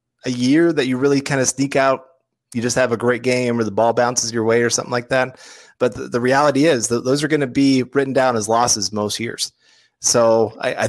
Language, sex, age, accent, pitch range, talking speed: English, male, 30-49, American, 125-160 Hz, 250 wpm